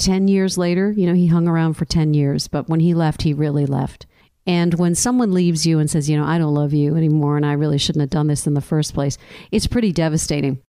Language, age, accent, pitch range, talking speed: English, 50-69, American, 155-205 Hz, 260 wpm